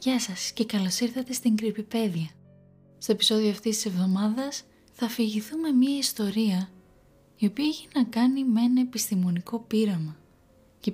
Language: Greek